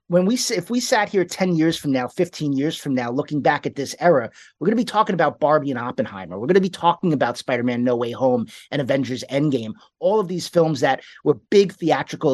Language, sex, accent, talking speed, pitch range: English, male, American, 240 wpm, 135-185 Hz